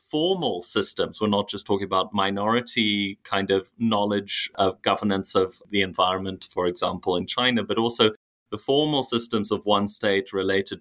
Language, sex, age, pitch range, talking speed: English, male, 30-49, 95-115 Hz, 160 wpm